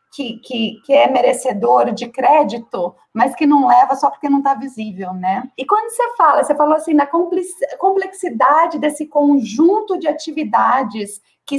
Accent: Brazilian